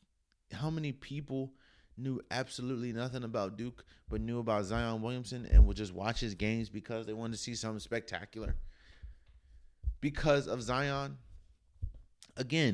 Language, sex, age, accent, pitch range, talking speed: English, male, 20-39, American, 80-120 Hz, 140 wpm